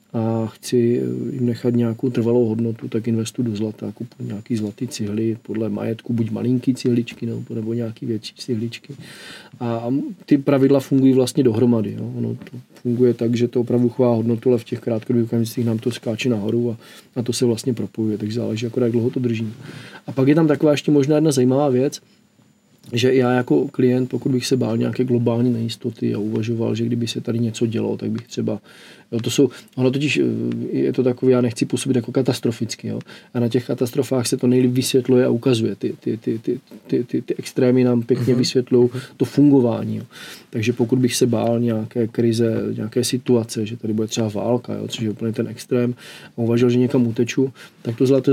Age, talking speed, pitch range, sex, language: 40-59, 195 wpm, 115-130 Hz, male, Czech